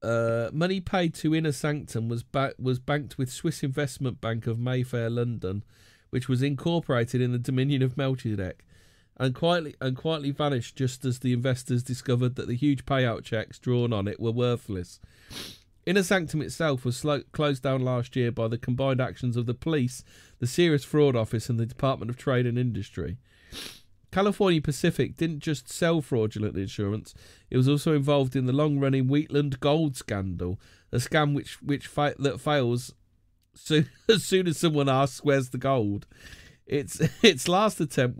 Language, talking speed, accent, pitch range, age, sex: English, 170 wpm, British, 110-145 Hz, 40-59, male